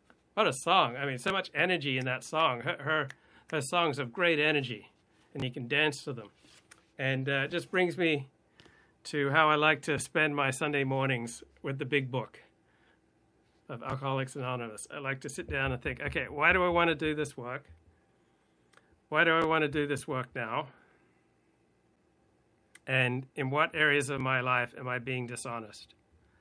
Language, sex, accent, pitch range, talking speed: English, male, American, 125-155 Hz, 185 wpm